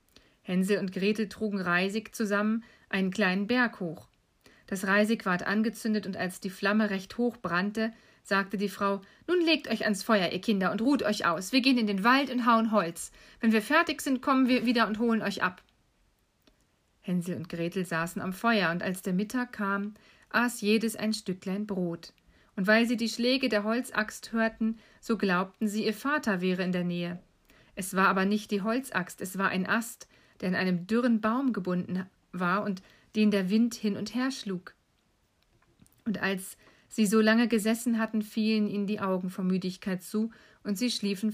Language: German